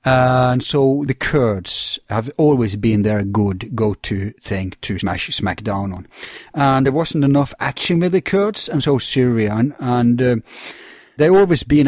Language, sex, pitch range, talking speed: English, male, 110-145 Hz, 160 wpm